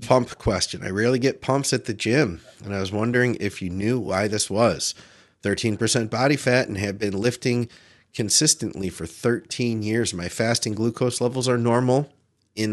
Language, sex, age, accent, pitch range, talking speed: English, male, 30-49, American, 95-120 Hz, 175 wpm